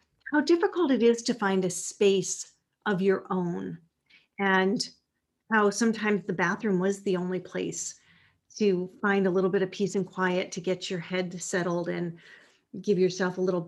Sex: female